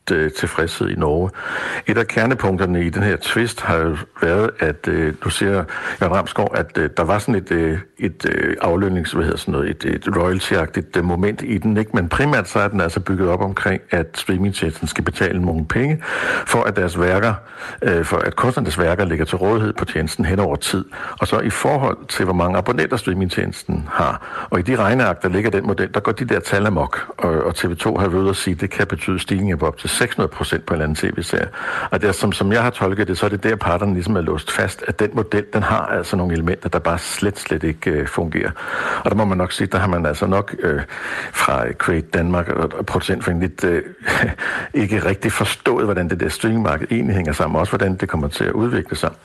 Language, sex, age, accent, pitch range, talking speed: Danish, male, 60-79, native, 90-105 Hz, 225 wpm